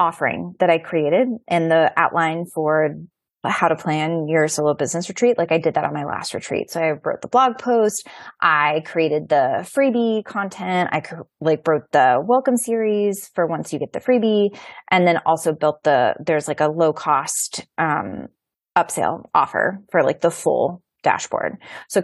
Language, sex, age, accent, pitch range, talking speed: English, female, 20-39, American, 155-180 Hz, 180 wpm